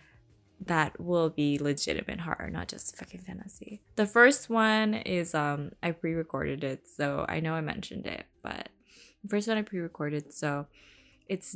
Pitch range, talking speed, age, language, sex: 145-190 Hz, 160 wpm, 20-39, English, female